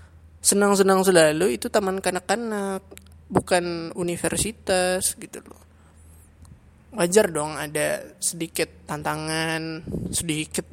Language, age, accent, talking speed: Indonesian, 20-39, native, 85 wpm